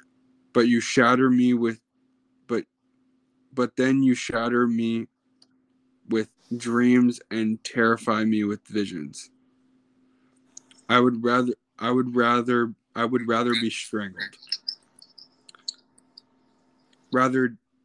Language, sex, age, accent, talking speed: English, male, 20-39, American, 100 wpm